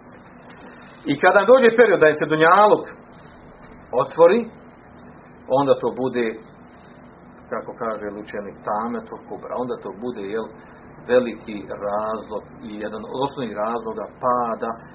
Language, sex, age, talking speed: Croatian, male, 40-59, 110 wpm